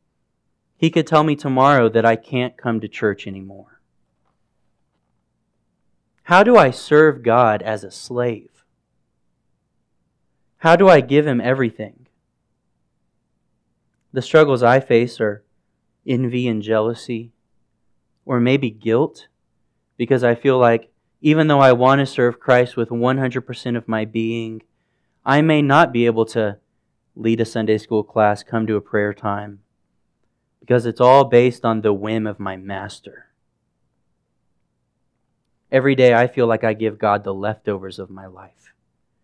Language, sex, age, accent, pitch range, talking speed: English, male, 20-39, American, 105-125 Hz, 140 wpm